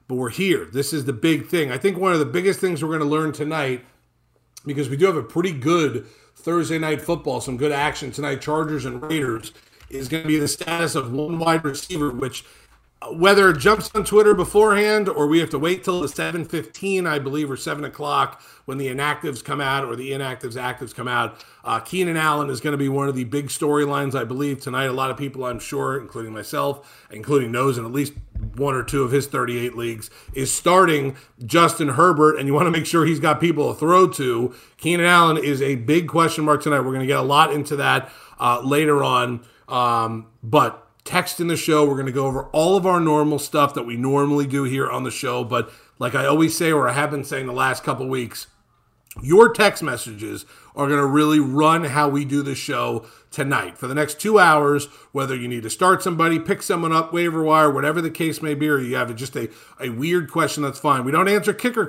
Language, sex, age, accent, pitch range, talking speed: English, male, 40-59, American, 135-160 Hz, 230 wpm